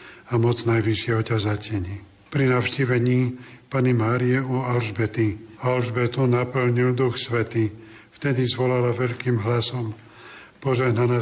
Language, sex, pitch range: Slovak, male, 115-135 Hz